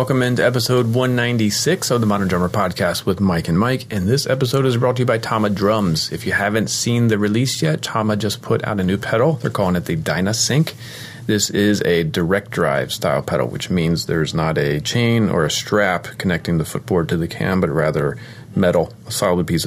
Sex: male